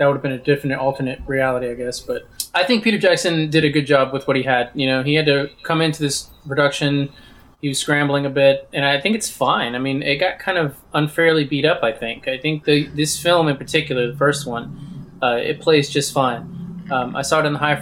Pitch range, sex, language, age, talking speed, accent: 135-150 Hz, male, English, 20-39, 255 wpm, American